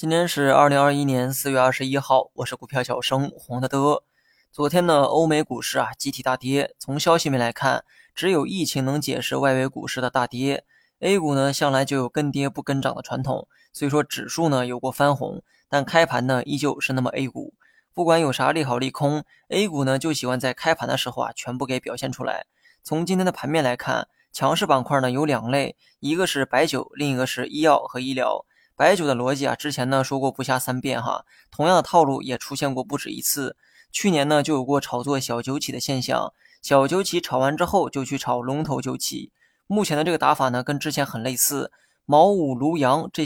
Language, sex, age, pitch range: Chinese, male, 20-39, 130-155 Hz